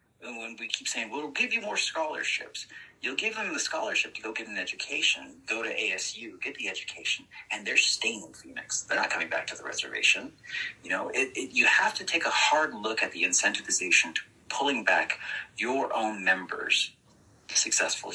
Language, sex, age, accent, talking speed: English, male, 30-49, American, 200 wpm